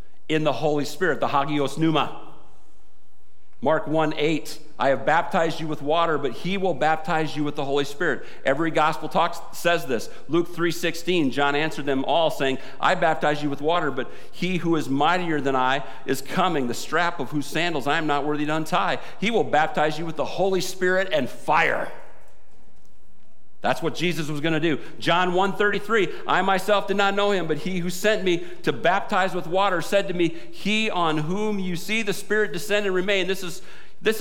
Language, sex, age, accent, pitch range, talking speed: English, male, 50-69, American, 155-195 Hz, 200 wpm